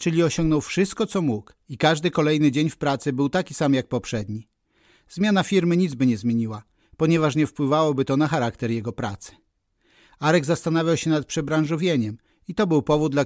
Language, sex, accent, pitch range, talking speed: Polish, male, native, 125-165 Hz, 180 wpm